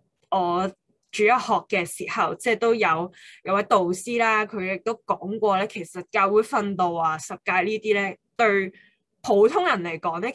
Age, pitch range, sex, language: 20-39, 185-230 Hz, female, Chinese